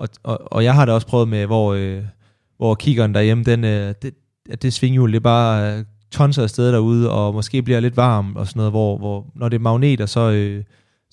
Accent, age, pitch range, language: native, 20-39, 105-125 Hz, Danish